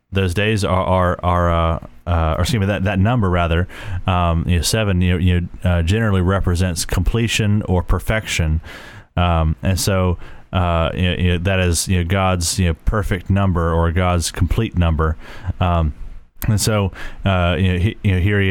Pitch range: 90-100 Hz